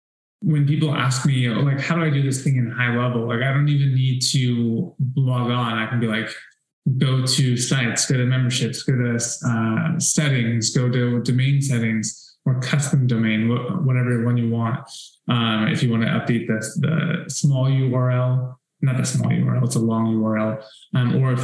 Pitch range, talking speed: 120-140 Hz, 190 wpm